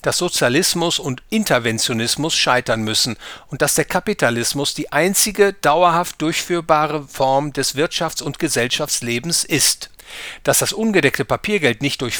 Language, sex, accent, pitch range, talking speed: English, male, German, 130-175 Hz, 130 wpm